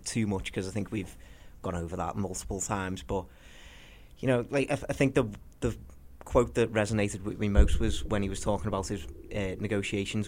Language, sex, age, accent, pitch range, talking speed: English, male, 30-49, British, 95-110 Hz, 210 wpm